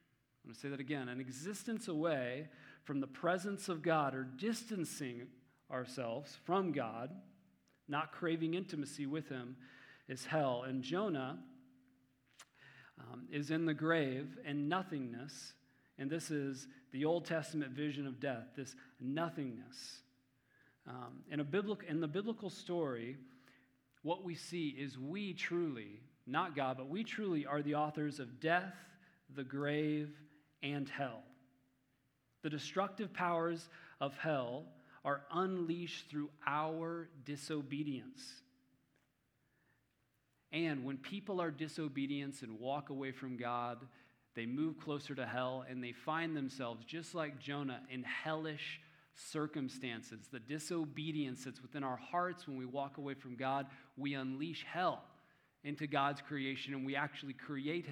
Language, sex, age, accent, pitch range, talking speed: English, male, 40-59, American, 130-160 Hz, 135 wpm